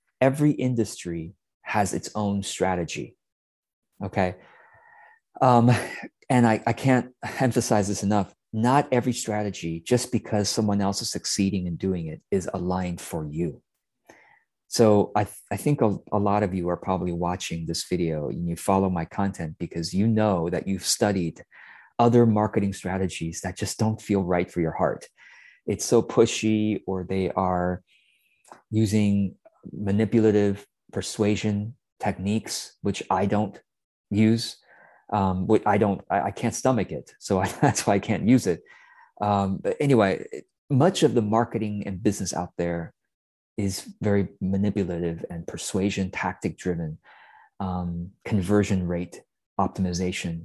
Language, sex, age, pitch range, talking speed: English, male, 30-49, 90-110 Hz, 145 wpm